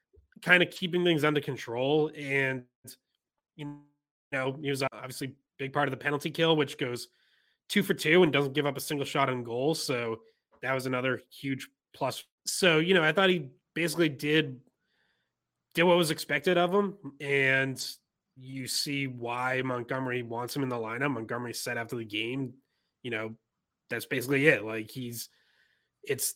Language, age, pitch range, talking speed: English, 20-39, 125-150 Hz, 175 wpm